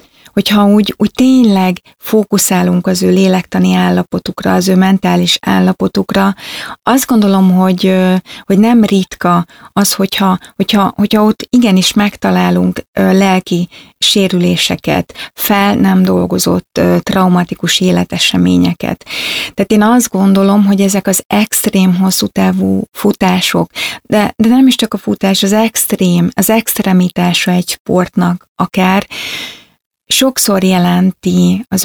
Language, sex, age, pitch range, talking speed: Hungarian, female, 30-49, 165-200 Hz, 115 wpm